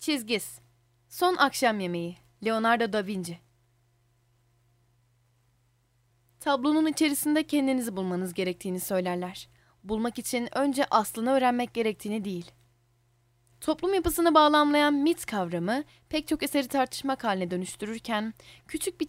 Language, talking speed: Turkish, 105 wpm